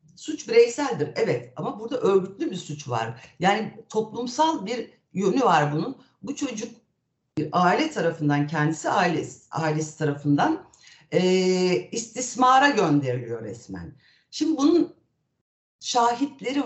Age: 60-79